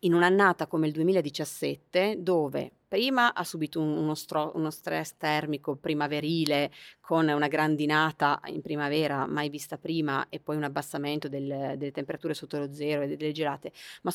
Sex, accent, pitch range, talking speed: female, native, 145-175 Hz, 150 wpm